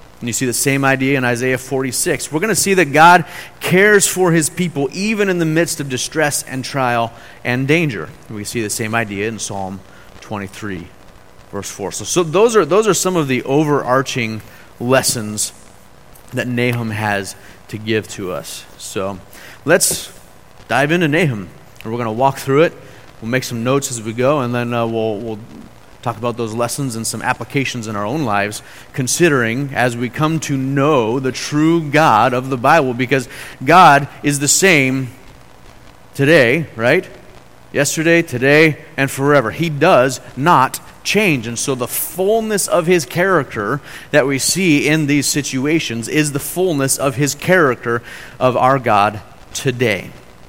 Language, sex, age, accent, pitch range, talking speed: English, male, 30-49, American, 115-150 Hz, 165 wpm